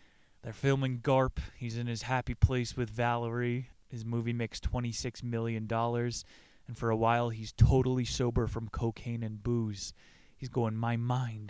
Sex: male